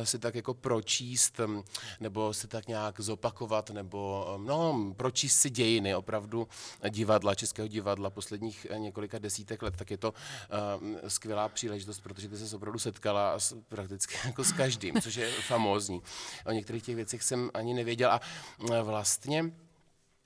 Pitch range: 105-120 Hz